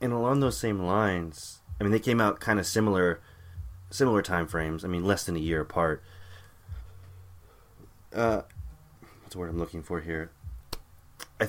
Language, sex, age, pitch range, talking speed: English, male, 20-39, 85-100 Hz, 160 wpm